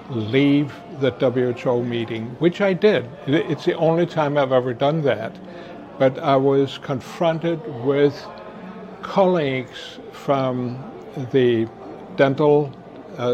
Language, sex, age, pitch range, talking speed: English, male, 60-79, 125-150 Hz, 115 wpm